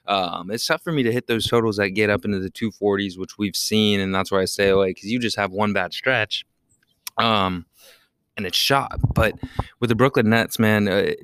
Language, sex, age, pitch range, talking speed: English, male, 20-39, 95-115 Hz, 230 wpm